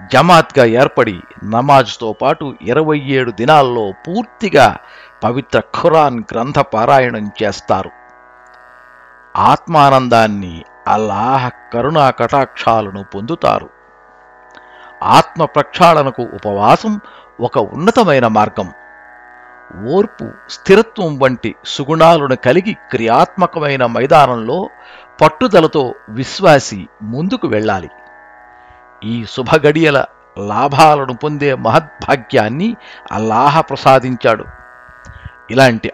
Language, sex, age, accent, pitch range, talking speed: Telugu, male, 50-69, native, 110-155 Hz, 70 wpm